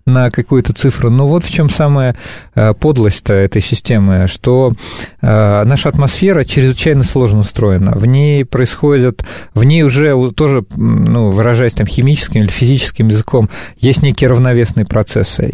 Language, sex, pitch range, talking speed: Russian, male, 110-140 Hz, 135 wpm